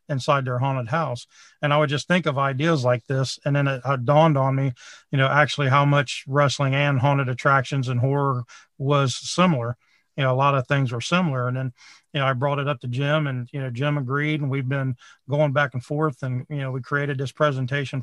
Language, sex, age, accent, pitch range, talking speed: English, male, 40-59, American, 130-145 Hz, 235 wpm